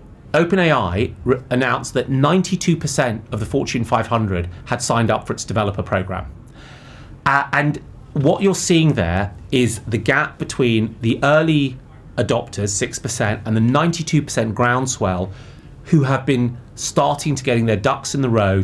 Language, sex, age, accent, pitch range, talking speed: English, male, 30-49, British, 105-135 Hz, 140 wpm